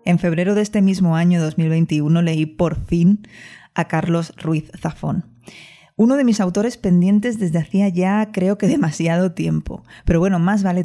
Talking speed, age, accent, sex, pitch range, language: 165 wpm, 20-39, Spanish, female, 160-190 Hz, Spanish